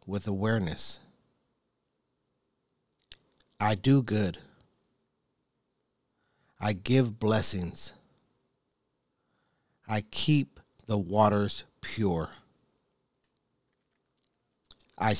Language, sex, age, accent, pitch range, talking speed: English, male, 40-59, American, 95-110 Hz, 55 wpm